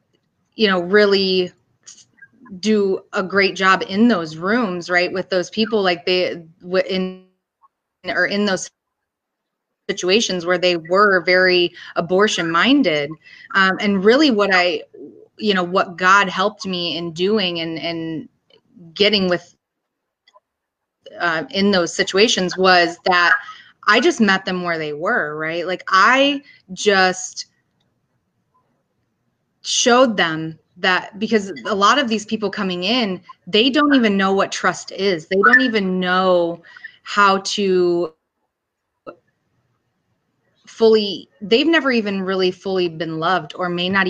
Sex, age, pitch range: female, 30-49, 175-210 Hz